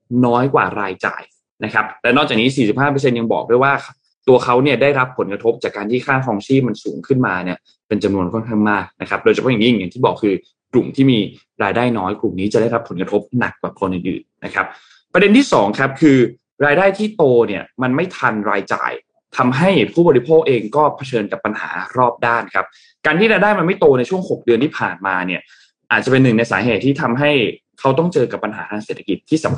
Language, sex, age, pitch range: Thai, male, 20-39, 105-145 Hz